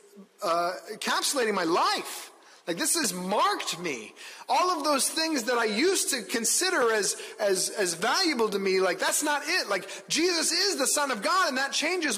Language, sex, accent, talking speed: English, male, American, 180 wpm